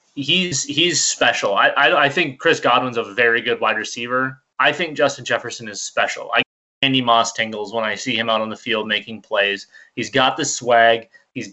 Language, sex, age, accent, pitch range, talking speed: English, male, 20-39, American, 115-145 Hz, 210 wpm